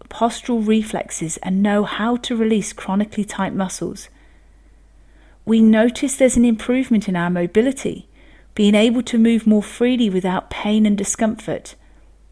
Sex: female